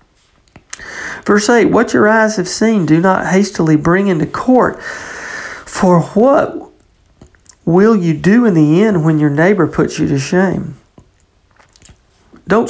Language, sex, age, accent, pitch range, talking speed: English, male, 50-69, American, 155-205 Hz, 135 wpm